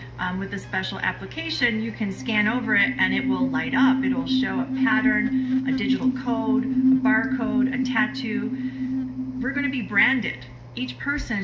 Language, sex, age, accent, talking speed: English, female, 30-49, American, 180 wpm